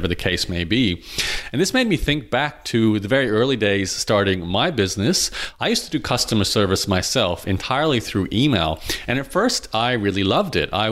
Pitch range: 100-125 Hz